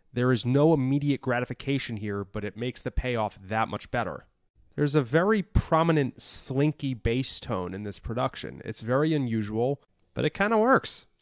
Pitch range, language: 110-140 Hz, English